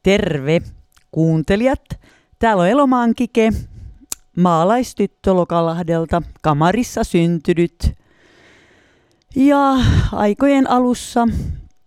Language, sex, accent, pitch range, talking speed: Finnish, female, native, 135-205 Hz, 60 wpm